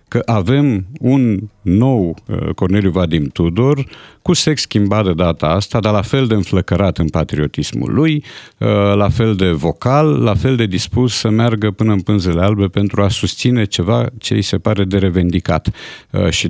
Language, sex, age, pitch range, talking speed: Romanian, male, 50-69, 95-125 Hz, 165 wpm